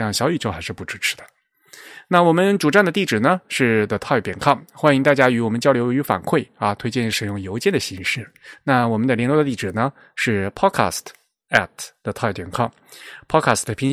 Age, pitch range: 20-39, 105-135 Hz